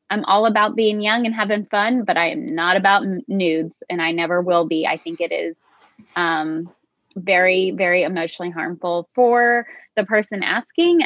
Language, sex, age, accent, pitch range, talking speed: English, female, 20-39, American, 175-205 Hz, 175 wpm